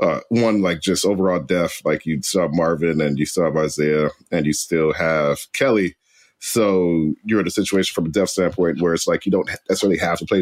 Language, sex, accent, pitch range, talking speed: English, male, American, 80-95 Hz, 225 wpm